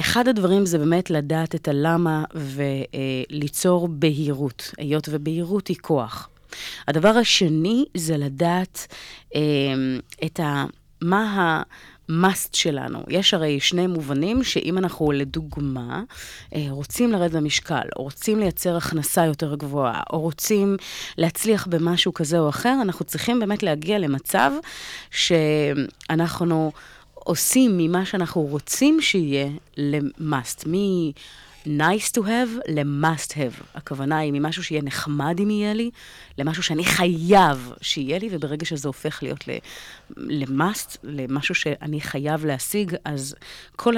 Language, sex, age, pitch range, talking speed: Hebrew, female, 30-49, 145-180 Hz, 115 wpm